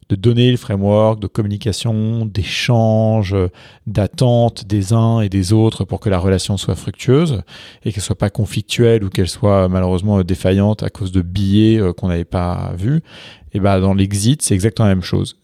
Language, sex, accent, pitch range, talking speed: English, male, French, 95-120 Hz, 180 wpm